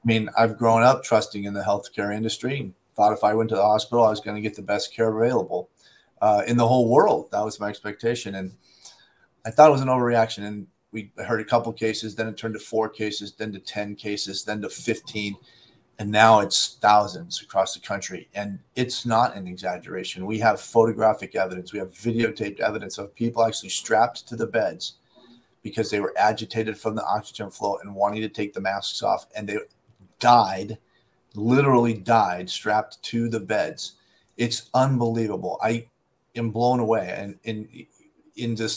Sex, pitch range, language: male, 105-120 Hz, English